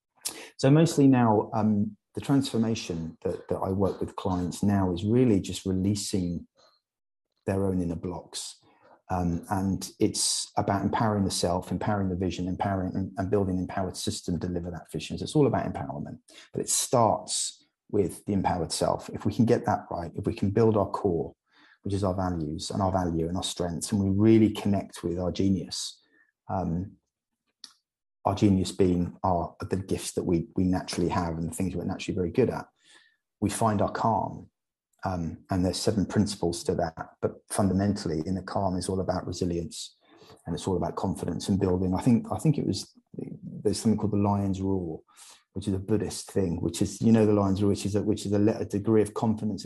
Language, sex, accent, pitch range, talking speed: English, male, British, 90-105 Hz, 195 wpm